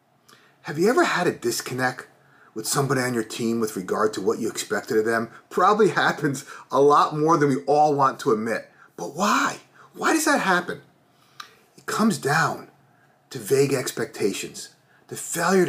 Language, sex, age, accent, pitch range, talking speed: English, male, 30-49, American, 140-185 Hz, 170 wpm